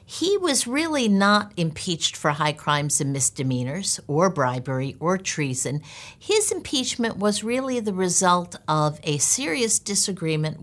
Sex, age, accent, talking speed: female, 60-79, American, 135 wpm